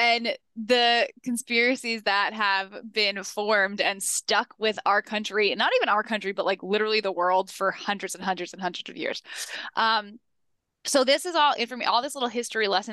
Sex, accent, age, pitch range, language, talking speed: female, American, 10-29, 185-235 Hz, English, 185 wpm